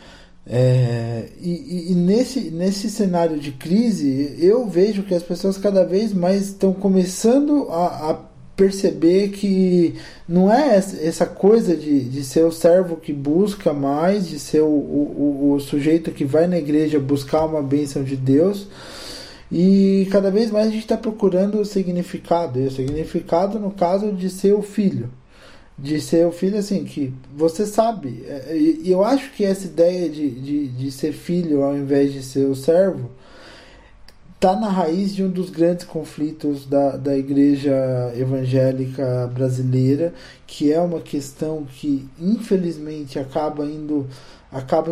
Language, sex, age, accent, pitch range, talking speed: Portuguese, male, 20-39, Brazilian, 140-190 Hz, 150 wpm